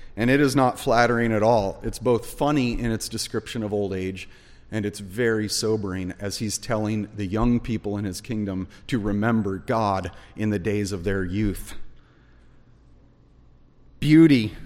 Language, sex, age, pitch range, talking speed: English, male, 40-59, 105-130 Hz, 160 wpm